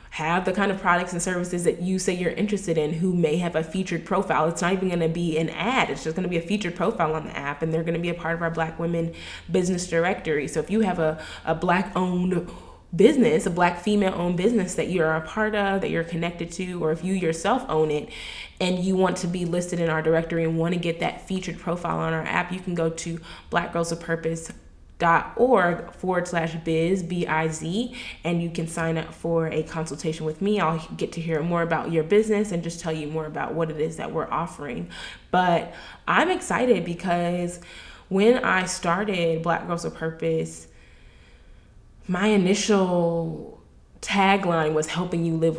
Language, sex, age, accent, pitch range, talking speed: English, female, 20-39, American, 160-185 Hz, 205 wpm